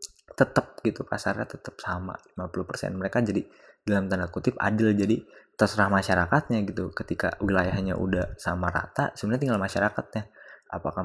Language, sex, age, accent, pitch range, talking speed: Indonesian, male, 20-39, native, 95-115 Hz, 135 wpm